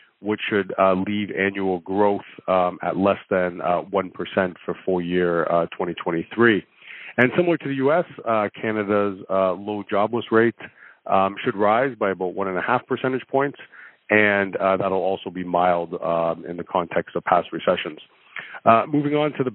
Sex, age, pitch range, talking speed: male, 40-59, 95-115 Hz, 160 wpm